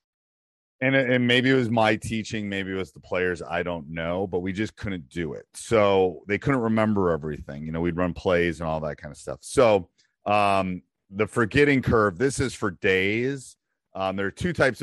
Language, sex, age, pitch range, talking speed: English, male, 40-59, 80-105 Hz, 205 wpm